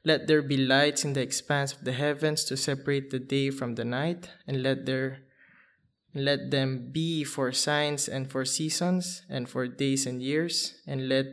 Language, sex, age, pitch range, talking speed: English, male, 20-39, 130-145 Hz, 185 wpm